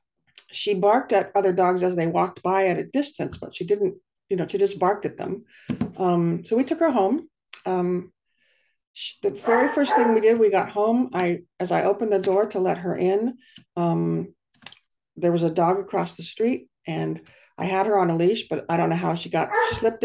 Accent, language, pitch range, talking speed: American, English, 175-215 Hz, 220 wpm